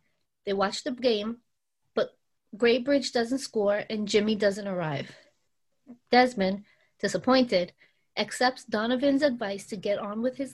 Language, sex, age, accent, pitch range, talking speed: English, female, 30-49, American, 205-275 Hz, 125 wpm